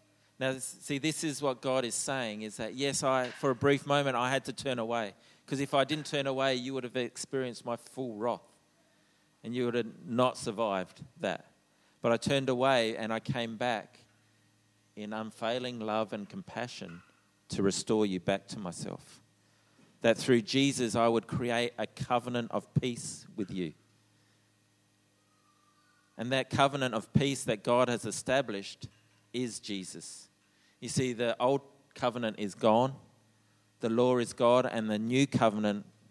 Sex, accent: male, Australian